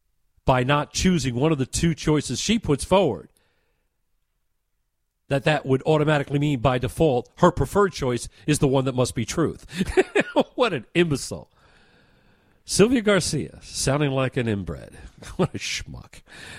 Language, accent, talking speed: English, American, 145 wpm